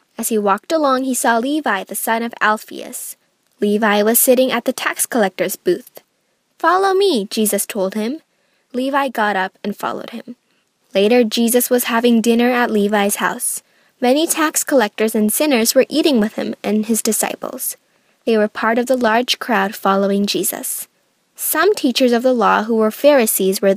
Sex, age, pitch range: female, 10-29, 220-275 Hz